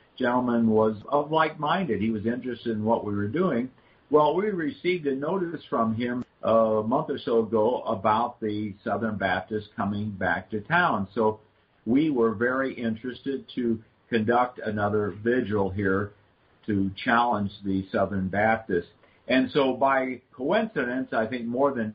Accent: American